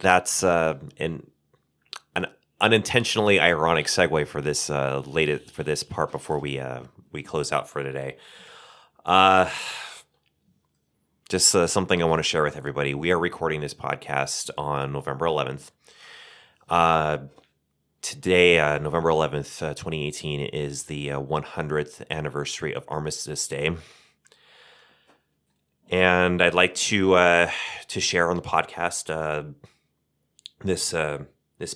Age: 30-49